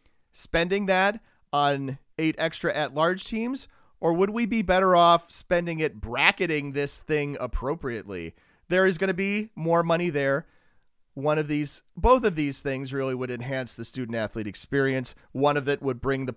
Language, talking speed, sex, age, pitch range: English, 170 wpm, male, 40-59, 125-165 Hz